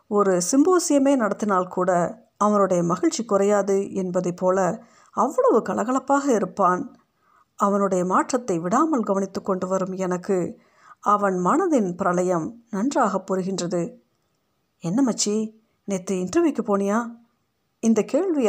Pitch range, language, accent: 185-245 Hz, Tamil, native